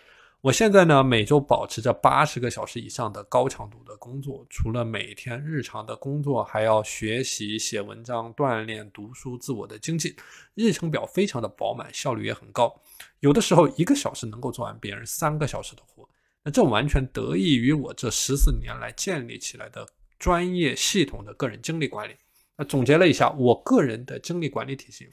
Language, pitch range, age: Chinese, 115-160 Hz, 20-39